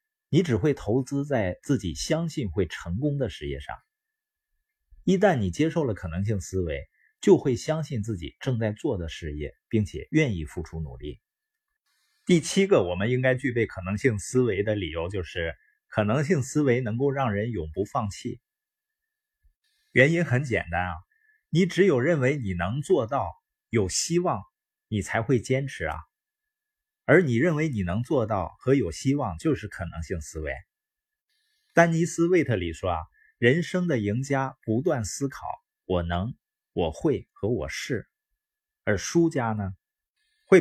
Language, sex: Chinese, male